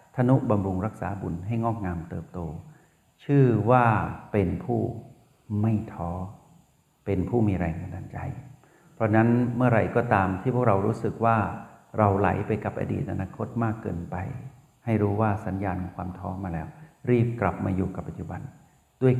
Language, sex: Thai, male